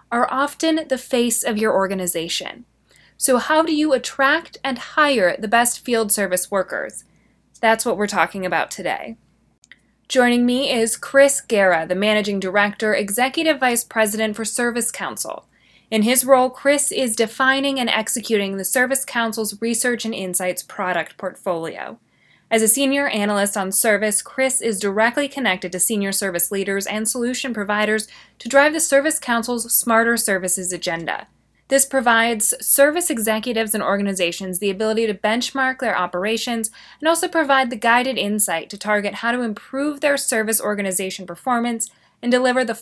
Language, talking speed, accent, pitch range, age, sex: English, 155 wpm, American, 205-255 Hz, 20-39, female